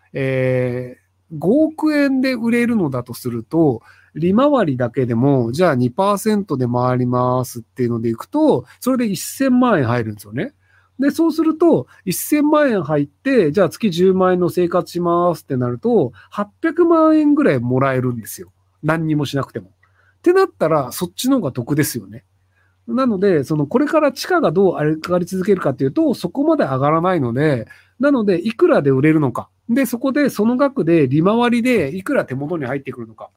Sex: male